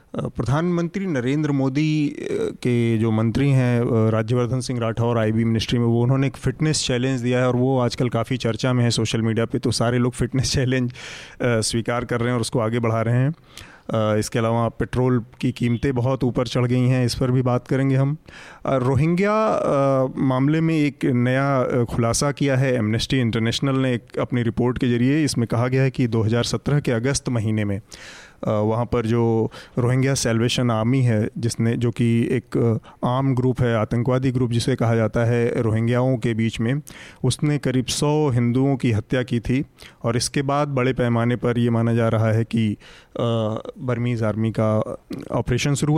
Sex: male